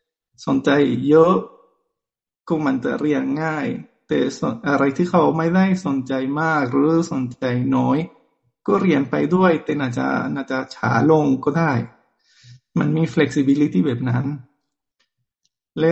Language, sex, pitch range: Thai, male, 135-185 Hz